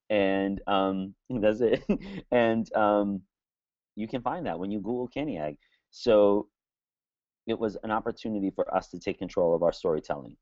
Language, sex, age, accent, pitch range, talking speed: English, male, 30-49, American, 95-120 Hz, 155 wpm